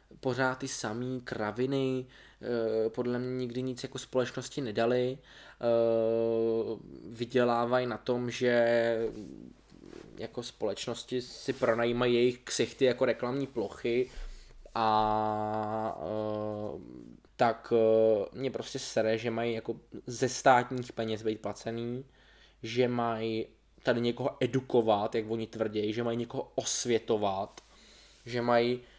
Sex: male